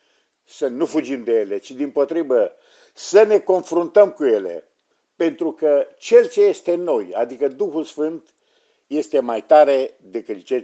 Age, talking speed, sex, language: 50-69, 160 wpm, male, Romanian